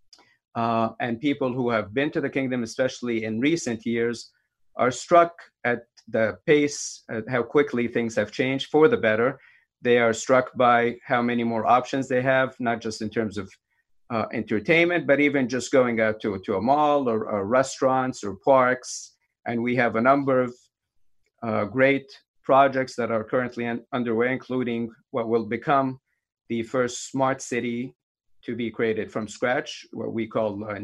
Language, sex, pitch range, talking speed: English, male, 115-135 Hz, 170 wpm